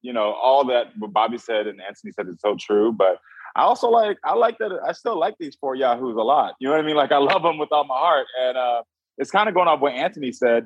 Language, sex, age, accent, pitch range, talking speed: English, male, 20-39, American, 110-150 Hz, 285 wpm